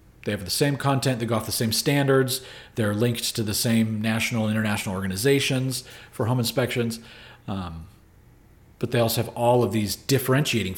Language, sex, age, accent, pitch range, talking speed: English, male, 40-59, American, 110-125 Hz, 180 wpm